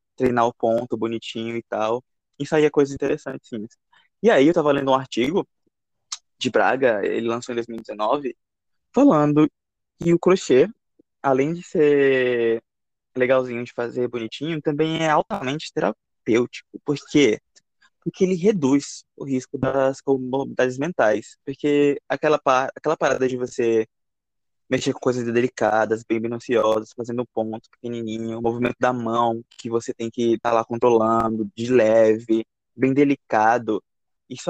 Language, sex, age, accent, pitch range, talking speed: Portuguese, male, 20-39, Brazilian, 115-140 Hz, 145 wpm